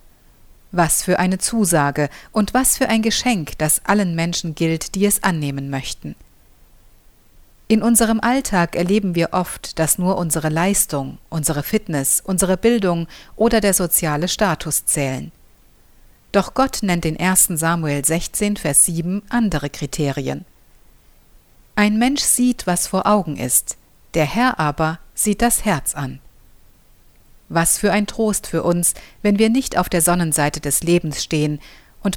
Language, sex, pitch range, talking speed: German, female, 155-210 Hz, 145 wpm